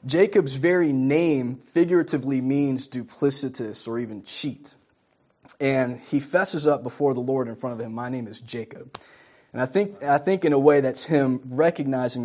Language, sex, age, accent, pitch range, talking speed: English, male, 20-39, American, 115-140 Hz, 170 wpm